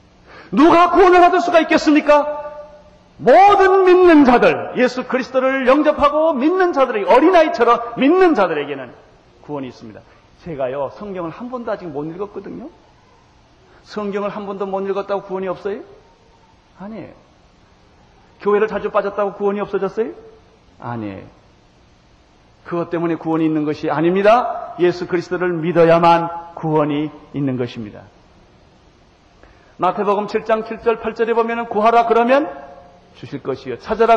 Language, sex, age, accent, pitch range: Korean, male, 40-59, native, 175-255 Hz